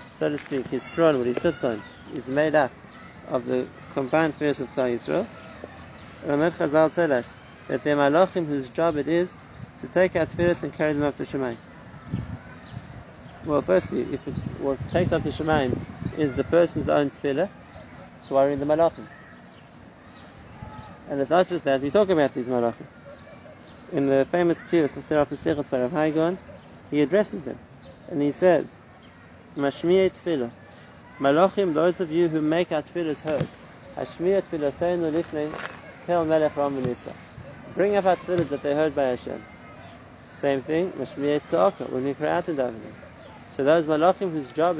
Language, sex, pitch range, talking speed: English, male, 135-170 Hz, 160 wpm